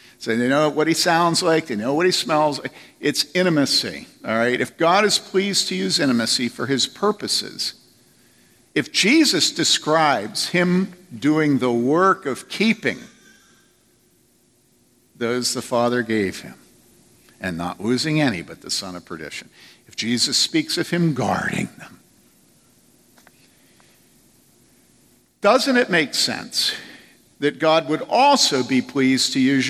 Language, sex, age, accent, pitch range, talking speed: English, male, 50-69, American, 125-175 Hz, 140 wpm